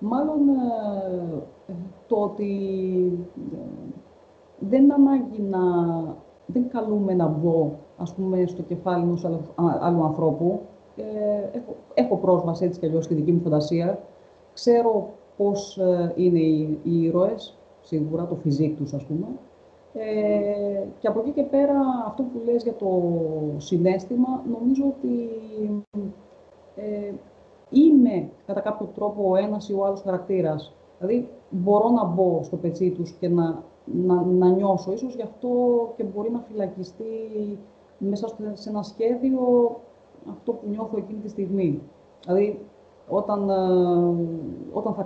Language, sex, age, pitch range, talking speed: Greek, female, 30-49, 180-230 Hz, 125 wpm